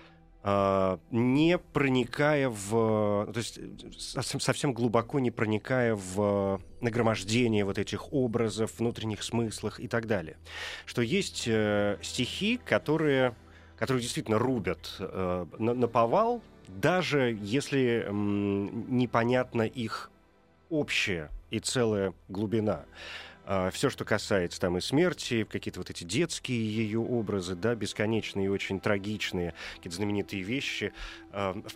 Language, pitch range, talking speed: Russian, 100-125 Hz, 110 wpm